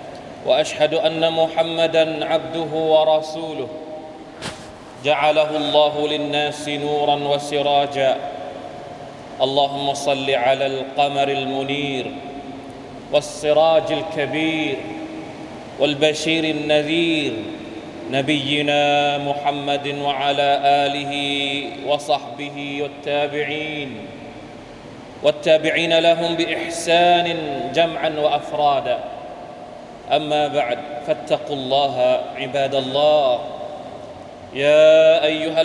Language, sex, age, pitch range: Thai, male, 30-49, 140-155 Hz